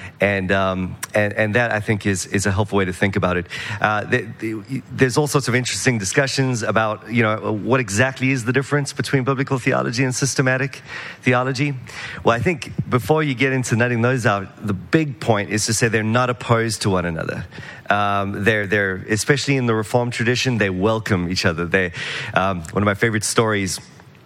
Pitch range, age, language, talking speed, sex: 100-125 Hz, 30-49, English, 200 wpm, male